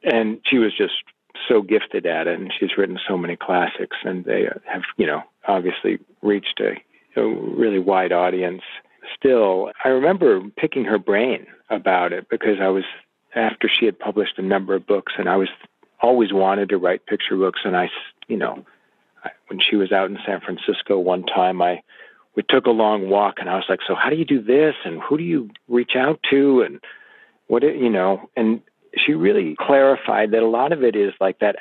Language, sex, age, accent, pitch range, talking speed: English, male, 40-59, American, 100-135 Hz, 200 wpm